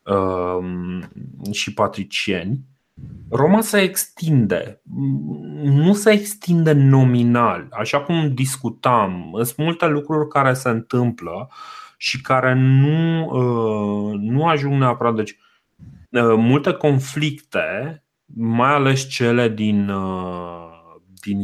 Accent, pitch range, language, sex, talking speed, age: native, 110-150 Hz, Romanian, male, 90 wpm, 30-49